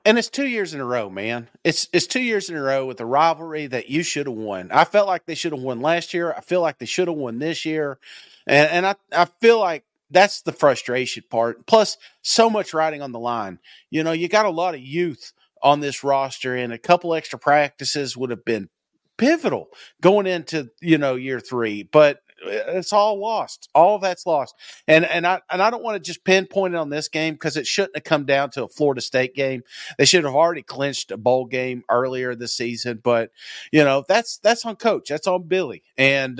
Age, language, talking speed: 40-59, English, 230 wpm